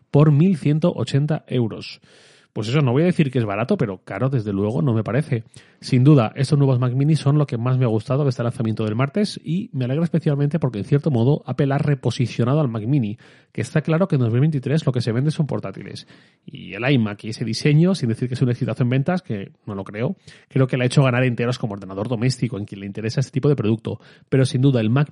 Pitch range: 115-150 Hz